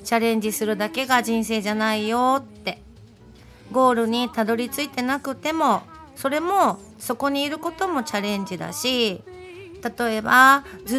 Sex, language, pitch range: female, Japanese, 200-260 Hz